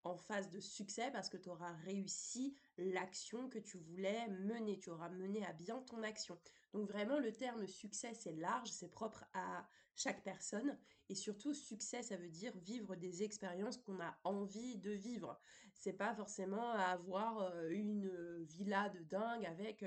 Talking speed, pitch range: 170 wpm, 190-250 Hz